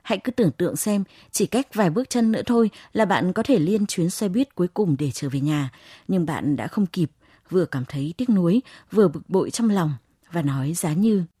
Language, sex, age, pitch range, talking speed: Vietnamese, female, 20-39, 150-210 Hz, 235 wpm